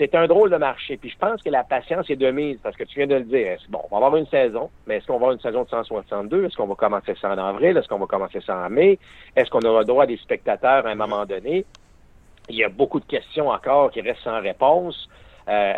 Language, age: French, 50-69